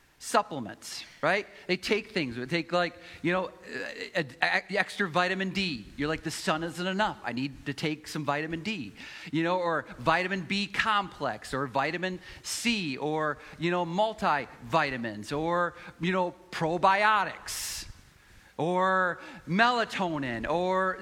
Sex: male